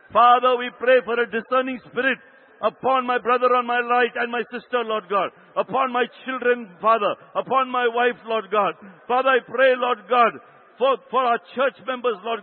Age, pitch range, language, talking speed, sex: 60-79, 190-245 Hz, English, 185 wpm, male